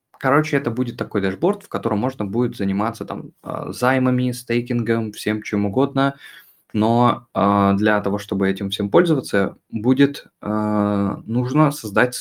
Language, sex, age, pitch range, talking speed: Russian, male, 20-39, 100-120 Hz, 130 wpm